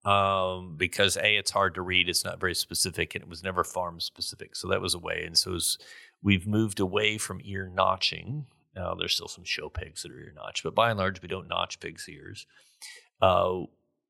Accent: American